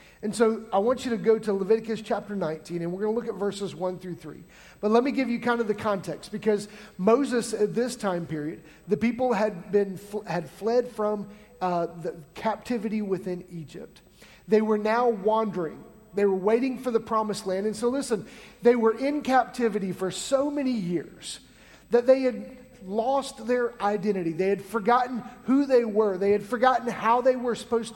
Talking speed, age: 190 wpm, 40-59